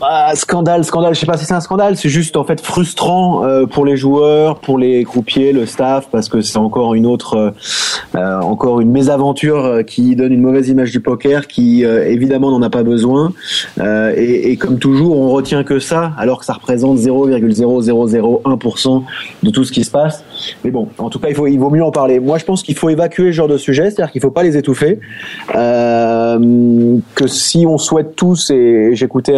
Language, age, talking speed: French, 20-39, 205 wpm